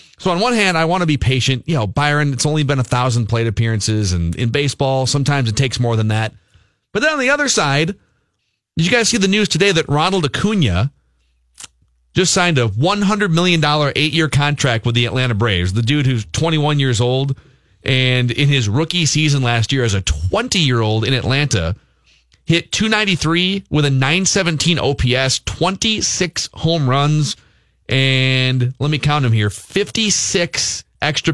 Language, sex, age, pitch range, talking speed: English, male, 30-49, 115-160 Hz, 190 wpm